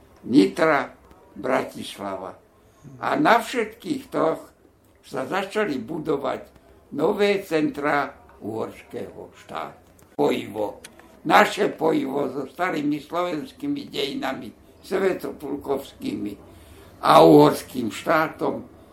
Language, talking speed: Slovak, 75 wpm